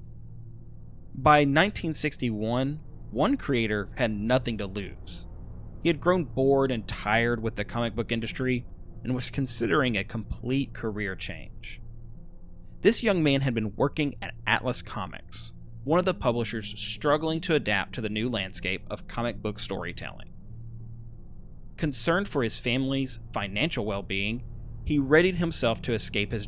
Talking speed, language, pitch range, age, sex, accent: 140 wpm, English, 105-140 Hz, 20-39, male, American